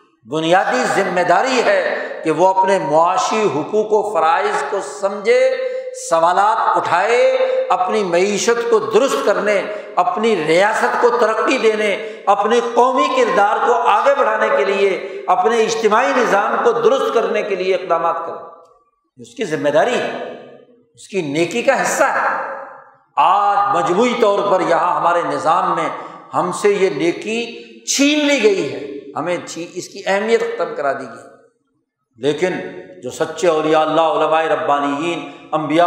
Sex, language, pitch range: male, Urdu, 160-240 Hz